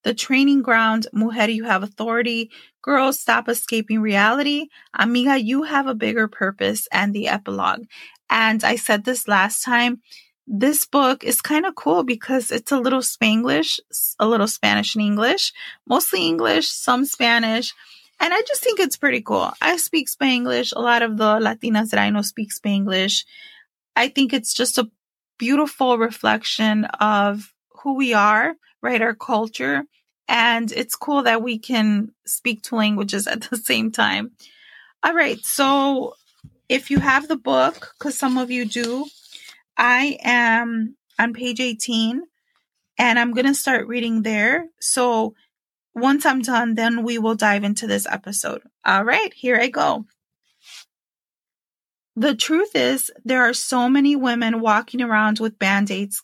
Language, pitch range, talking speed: English, 220-270 Hz, 155 wpm